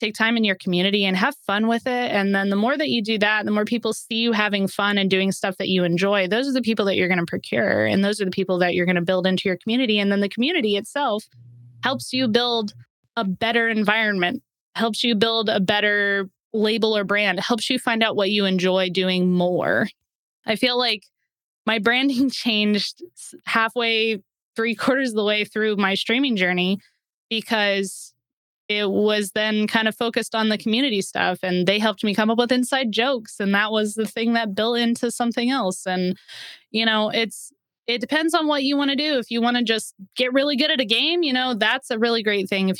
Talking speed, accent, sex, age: 220 wpm, American, female, 20-39